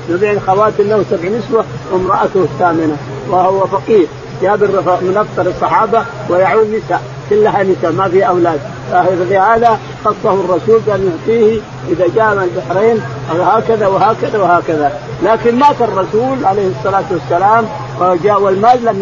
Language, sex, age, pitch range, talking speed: Arabic, male, 50-69, 180-220 Hz, 130 wpm